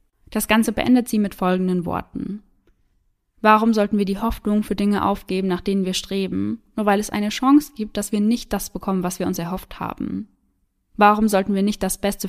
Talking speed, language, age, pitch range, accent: 200 wpm, German, 20-39, 180-210 Hz, German